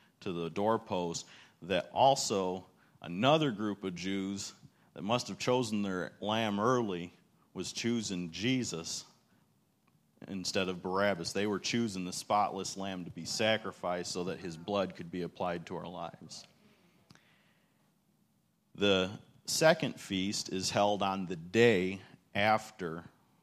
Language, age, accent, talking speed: English, 40-59, American, 130 wpm